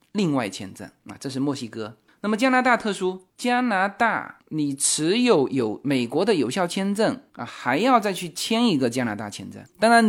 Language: Chinese